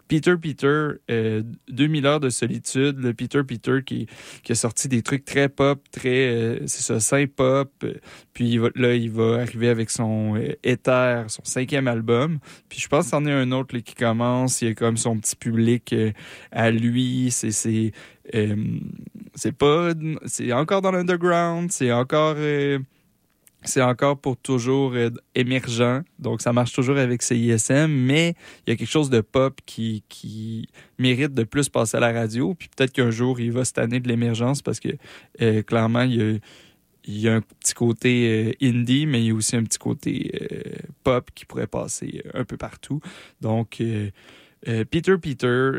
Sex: male